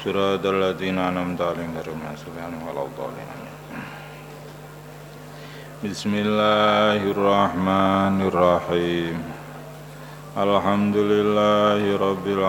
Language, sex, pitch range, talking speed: Indonesian, male, 90-105 Hz, 50 wpm